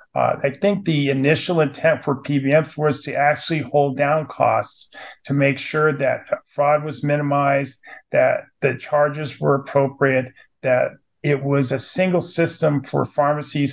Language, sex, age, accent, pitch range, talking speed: English, male, 50-69, American, 135-150 Hz, 150 wpm